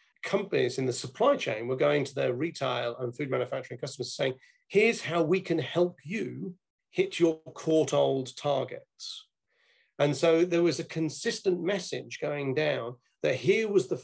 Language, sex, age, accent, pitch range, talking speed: English, male, 40-59, British, 135-180 Hz, 165 wpm